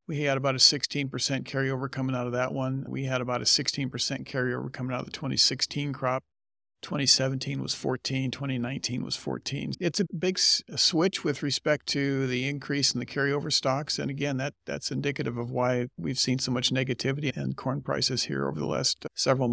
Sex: male